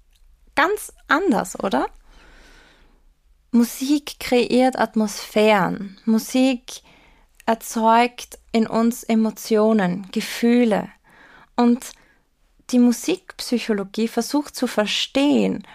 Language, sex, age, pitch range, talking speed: German, female, 20-39, 210-245 Hz, 70 wpm